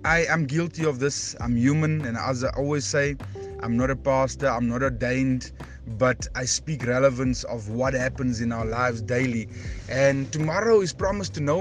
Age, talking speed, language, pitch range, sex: 20-39, 185 wpm, English, 125-155 Hz, male